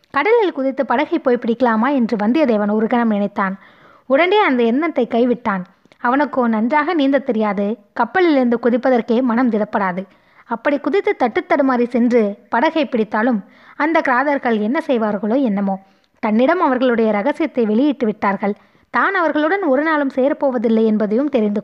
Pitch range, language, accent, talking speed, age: 220-275 Hz, Tamil, native, 130 wpm, 20-39